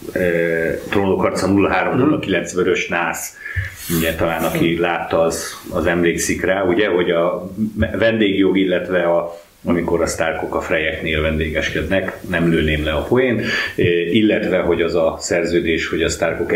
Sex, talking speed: male, 140 wpm